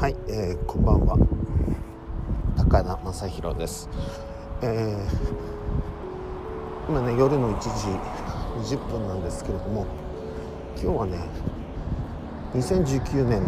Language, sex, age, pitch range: Japanese, male, 50-69, 75-110 Hz